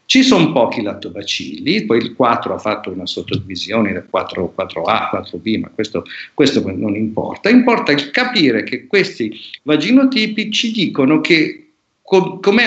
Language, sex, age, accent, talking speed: Italian, male, 50-69, native, 135 wpm